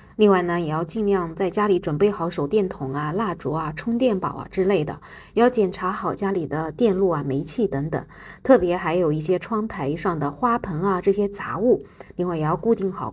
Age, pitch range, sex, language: 20-39, 170-215 Hz, female, Chinese